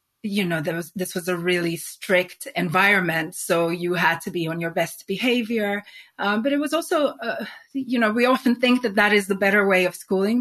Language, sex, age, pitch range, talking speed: English, female, 30-49, 180-220 Hz, 220 wpm